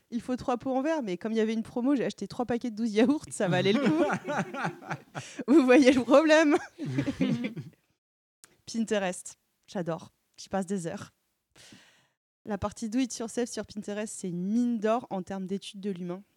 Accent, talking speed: French, 180 wpm